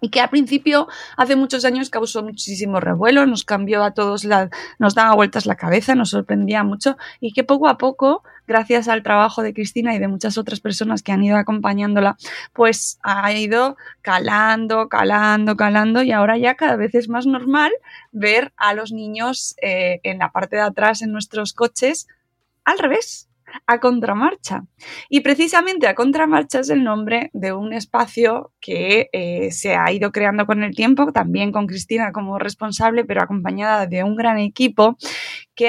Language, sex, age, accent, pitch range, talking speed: Spanish, female, 20-39, Spanish, 205-250 Hz, 175 wpm